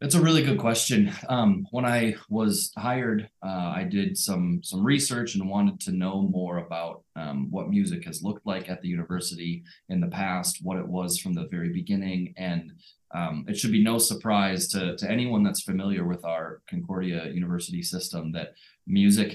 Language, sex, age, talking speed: English, male, 20-39, 185 wpm